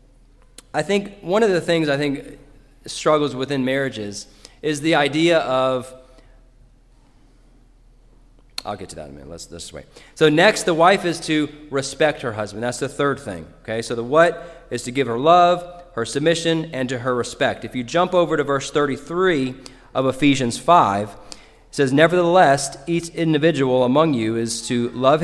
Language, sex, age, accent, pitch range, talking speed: English, male, 30-49, American, 125-160 Hz, 175 wpm